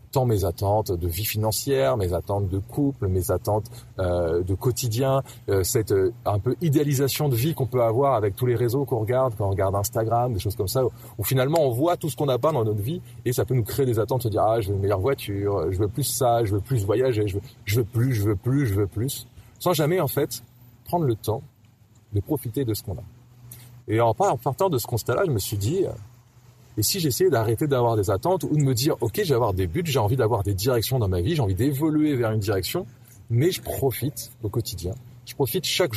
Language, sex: French, male